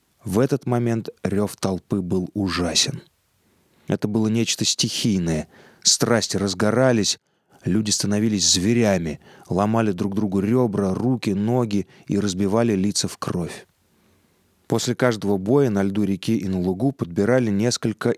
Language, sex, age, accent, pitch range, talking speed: Russian, male, 20-39, native, 95-120 Hz, 125 wpm